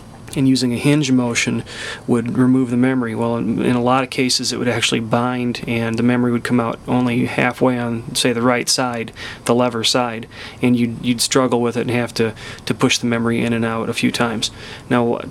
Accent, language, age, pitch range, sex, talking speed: American, English, 30-49, 120-130 Hz, male, 220 wpm